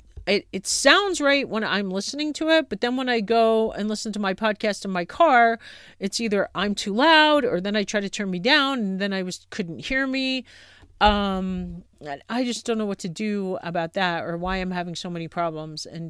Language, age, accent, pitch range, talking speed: English, 40-59, American, 170-240 Hz, 225 wpm